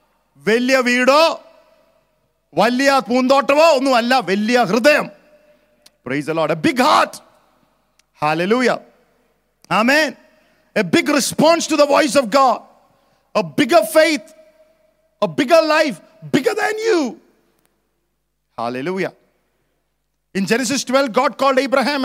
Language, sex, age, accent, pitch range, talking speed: English, male, 50-69, Indian, 230-290 Hz, 85 wpm